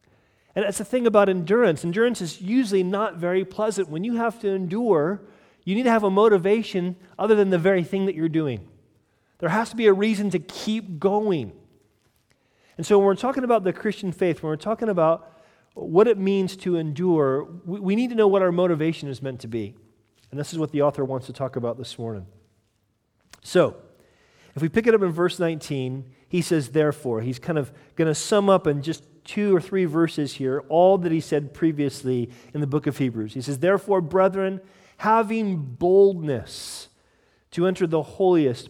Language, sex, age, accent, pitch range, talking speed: English, male, 40-59, American, 140-195 Hz, 200 wpm